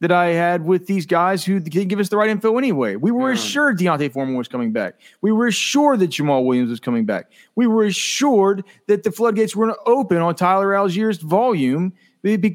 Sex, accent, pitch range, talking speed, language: male, American, 135-190 Hz, 215 wpm, English